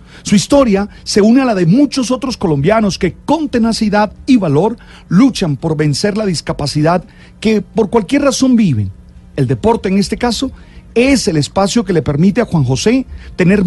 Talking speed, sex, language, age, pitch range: 175 wpm, male, Spanish, 40-59, 155-230 Hz